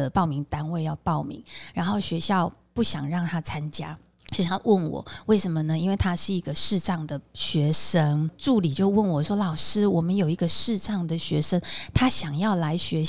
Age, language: 20-39, Chinese